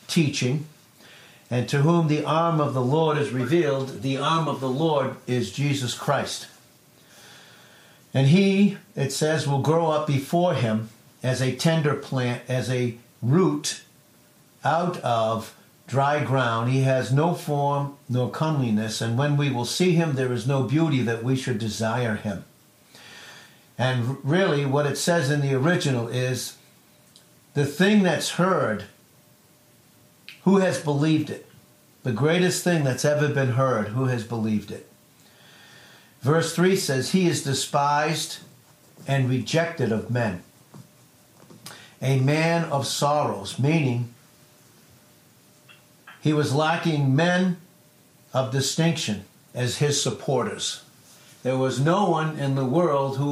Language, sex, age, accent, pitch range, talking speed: English, male, 60-79, American, 130-160 Hz, 135 wpm